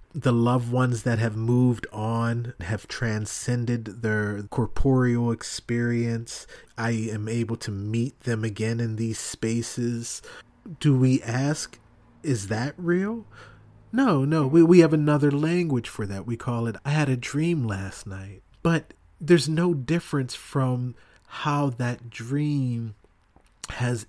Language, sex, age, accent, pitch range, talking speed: English, male, 30-49, American, 110-140 Hz, 135 wpm